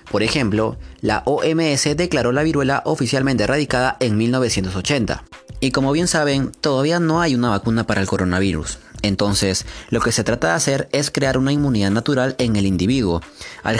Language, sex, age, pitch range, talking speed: Spanish, male, 30-49, 105-140 Hz, 170 wpm